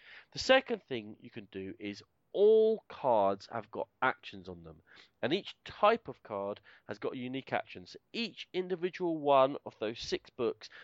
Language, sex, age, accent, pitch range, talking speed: English, male, 40-59, British, 115-170 Hz, 165 wpm